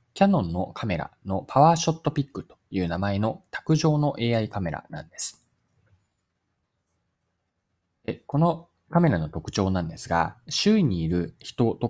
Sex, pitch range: male, 90-145 Hz